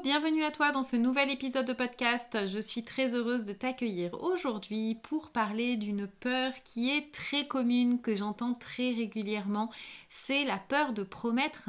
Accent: French